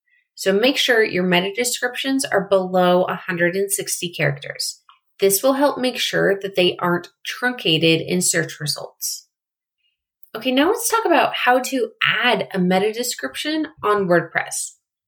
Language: English